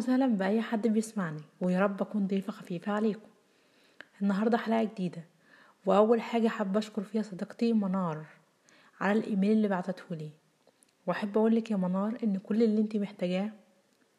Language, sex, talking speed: Arabic, female, 155 wpm